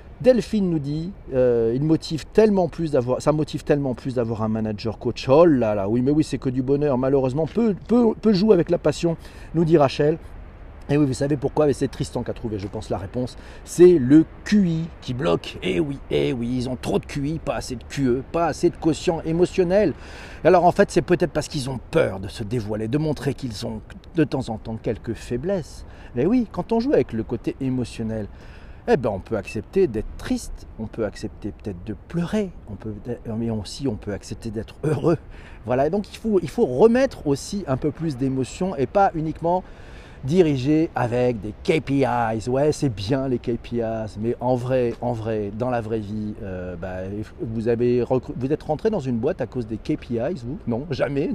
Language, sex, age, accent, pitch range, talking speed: French, male, 40-59, French, 115-165 Hz, 205 wpm